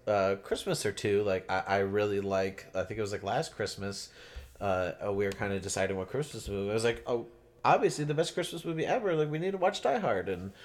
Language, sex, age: English, male, 30-49